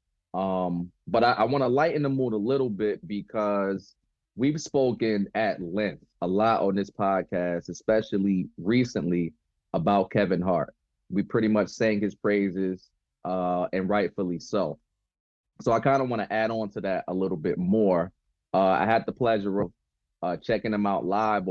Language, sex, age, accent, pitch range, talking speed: English, male, 30-49, American, 95-110 Hz, 170 wpm